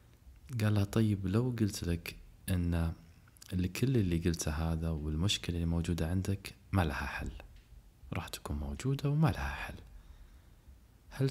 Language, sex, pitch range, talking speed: Arabic, male, 80-110 Hz, 125 wpm